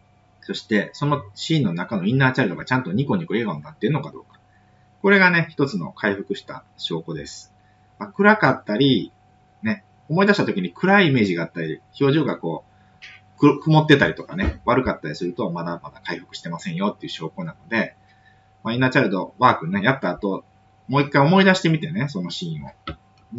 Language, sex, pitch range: Japanese, male, 100-170 Hz